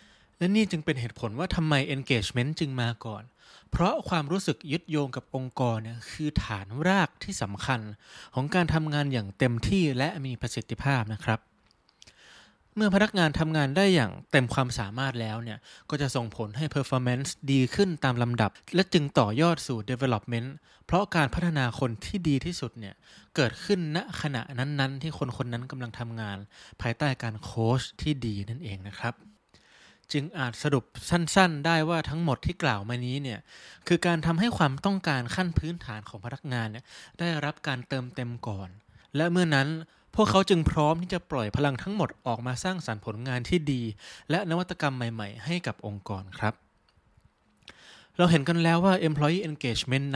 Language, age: Thai, 20-39